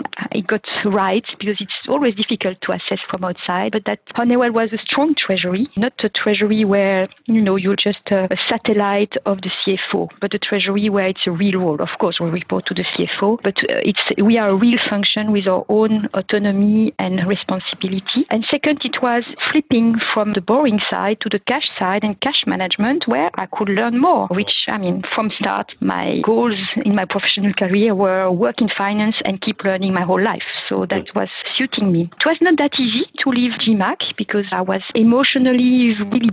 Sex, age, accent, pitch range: female, 40-59, French, 195-240 Hz